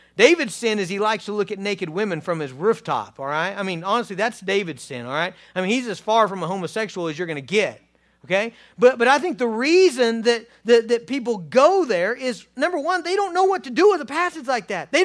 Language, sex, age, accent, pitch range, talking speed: English, male, 40-59, American, 165-265 Hz, 255 wpm